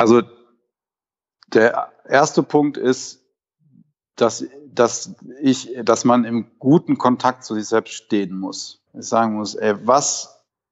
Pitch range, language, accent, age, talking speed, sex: 115-185 Hz, German, German, 40-59, 130 wpm, male